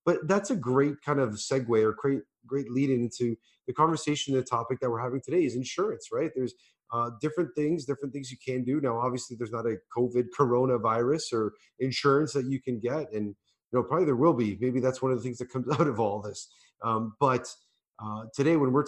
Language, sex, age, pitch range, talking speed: English, male, 30-49, 110-140 Hz, 225 wpm